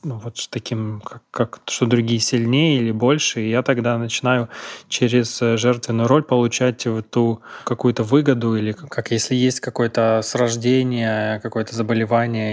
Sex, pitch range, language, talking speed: male, 115-130 Hz, Ukrainian, 140 wpm